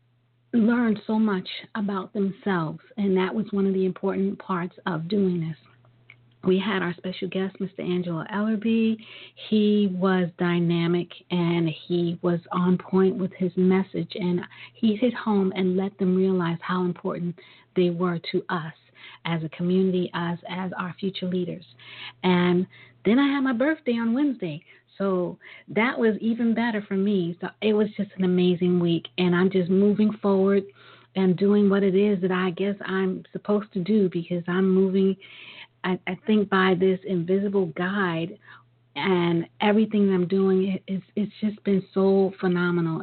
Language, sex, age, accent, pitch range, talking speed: English, female, 40-59, American, 175-200 Hz, 165 wpm